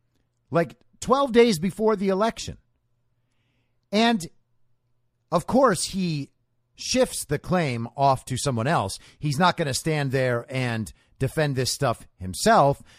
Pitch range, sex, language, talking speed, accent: 120-190 Hz, male, English, 130 wpm, American